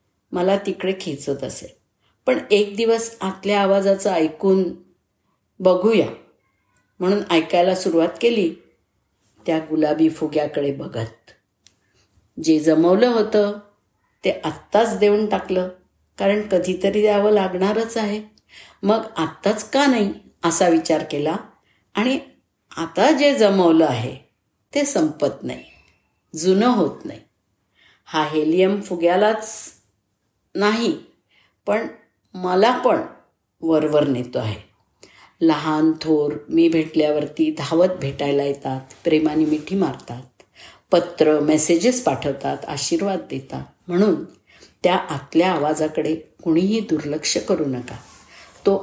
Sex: female